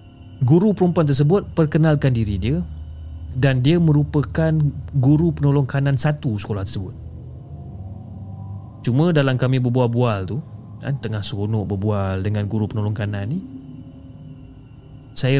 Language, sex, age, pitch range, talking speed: Malay, male, 30-49, 105-145 Hz, 115 wpm